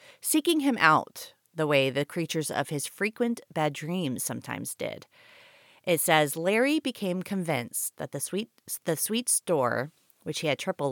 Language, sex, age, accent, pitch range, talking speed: English, female, 30-49, American, 140-190 Hz, 160 wpm